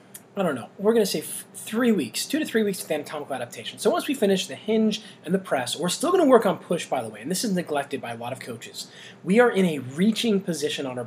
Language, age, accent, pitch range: English, 20-39, American, 140-205 Hz